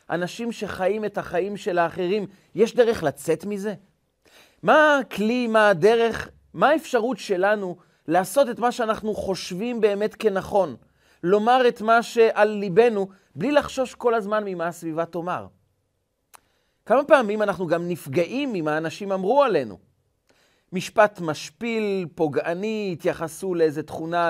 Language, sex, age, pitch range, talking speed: Hebrew, male, 40-59, 170-225 Hz, 125 wpm